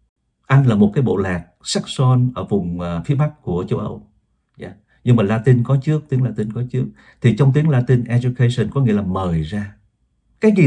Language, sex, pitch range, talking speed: Vietnamese, male, 100-130 Hz, 200 wpm